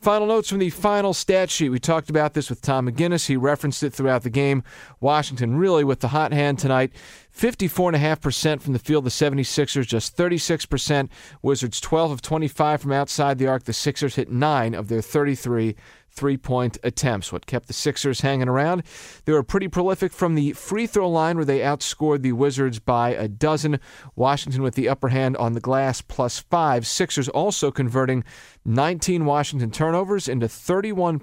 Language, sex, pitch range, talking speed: English, male, 125-160 Hz, 175 wpm